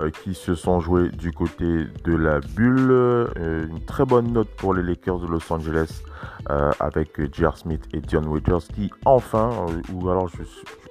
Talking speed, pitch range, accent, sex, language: 185 wpm, 80-95 Hz, French, male, French